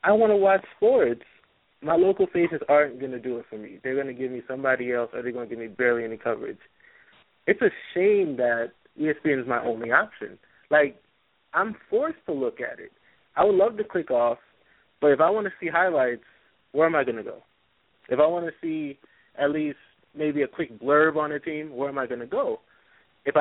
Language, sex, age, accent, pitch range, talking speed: English, male, 20-39, American, 125-160 Hz, 225 wpm